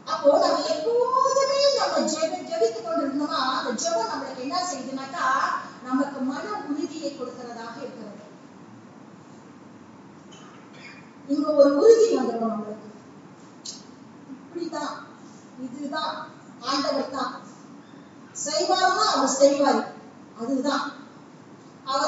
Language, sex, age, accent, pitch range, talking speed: English, female, 20-39, Indian, 260-330 Hz, 75 wpm